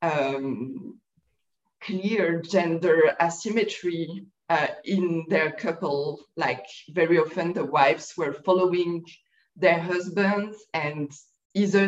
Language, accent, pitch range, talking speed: English, French, 155-185 Hz, 95 wpm